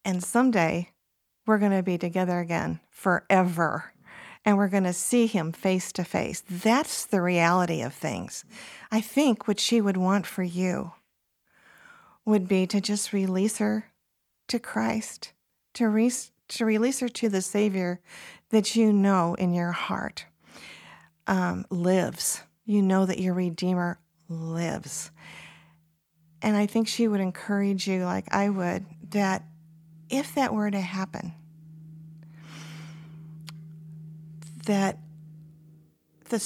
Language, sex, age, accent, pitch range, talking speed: English, female, 50-69, American, 175-215 Hz, 130 wpm